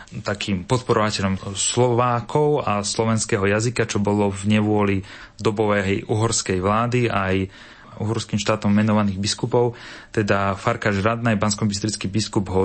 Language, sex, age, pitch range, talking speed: Slovak, male, 30-49, 100-115 Hz, 115 wpm